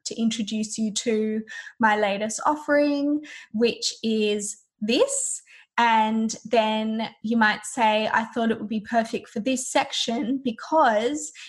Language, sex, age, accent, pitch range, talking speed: English, female, 10-29, Australian, 220-270 Hz, 130 wpm